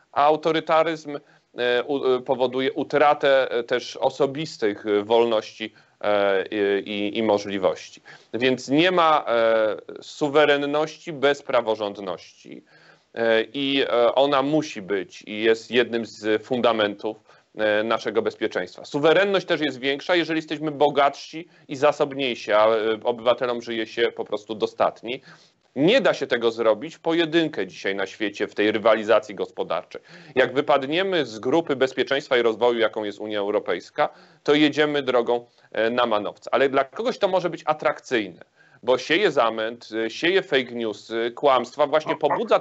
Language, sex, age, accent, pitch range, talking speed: Polish, male, 30-49, native, 115-155 Hz, 125 wpm